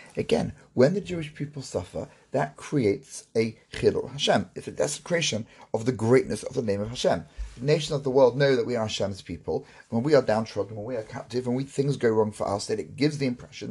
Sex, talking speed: male, 230 wpm